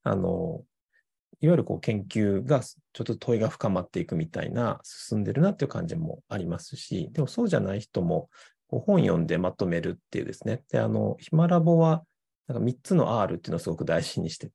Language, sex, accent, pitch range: Japanese, male, native, 125-175 Hz